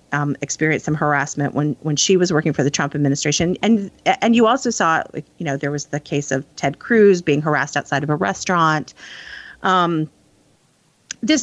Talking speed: 185 wpm